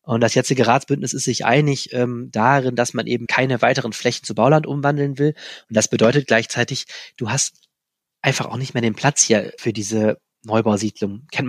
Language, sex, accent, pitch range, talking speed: German, male, German, 115-135 Hz, 190 wpm